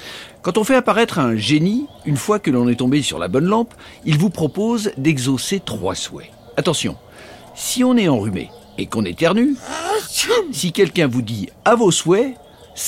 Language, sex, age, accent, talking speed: French, male, 60-79, French, 185 wpm